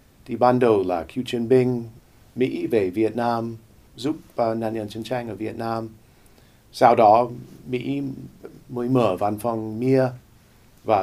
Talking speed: 160 wpm